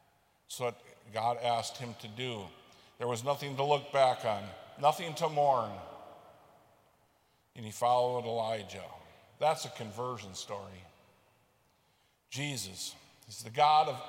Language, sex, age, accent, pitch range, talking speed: English, male, 50-69, American, 115-145 Hz, 130 wpm